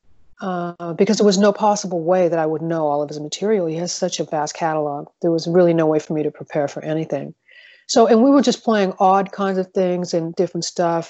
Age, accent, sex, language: 40-59, American, female, English